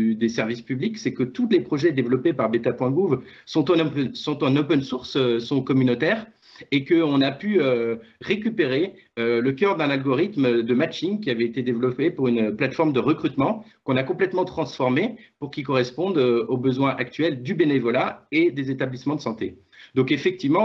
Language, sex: French, male